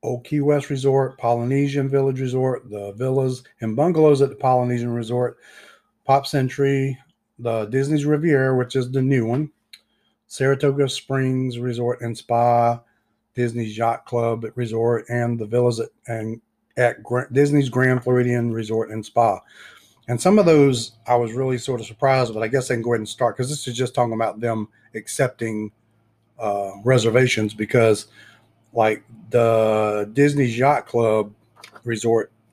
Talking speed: 155 wpm